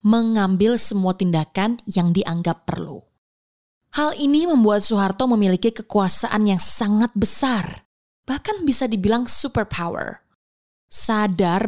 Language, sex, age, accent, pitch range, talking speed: Indonesian, female, 20-39, native, 180-230 Hz, 105 wpm